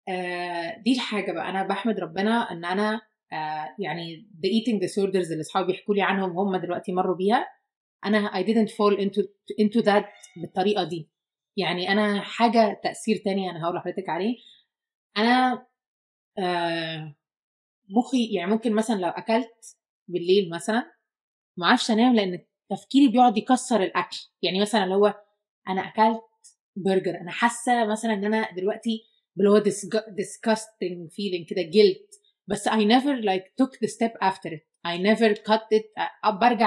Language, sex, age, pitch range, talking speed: Arabic, female, 20-39, 185-220 Hz, 145 wpm